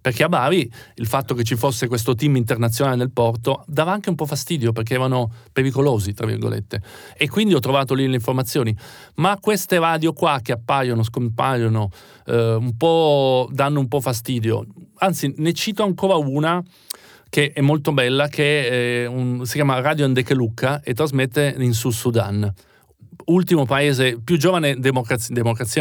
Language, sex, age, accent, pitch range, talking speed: Italian, male, 40-59, native, 120-155 Hz, 160 wpm